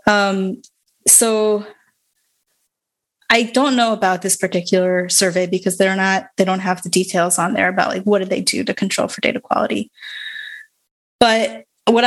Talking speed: 160 wpm